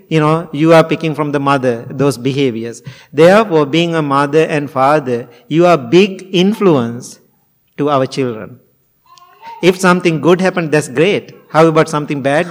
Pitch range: 145-185 Hz